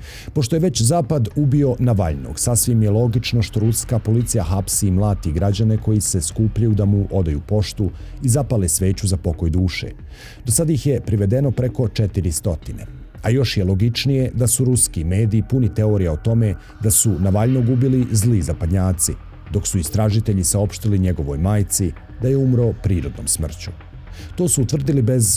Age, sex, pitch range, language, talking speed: 50-69, male, 90-115 Hz, Croatian, 165 wpm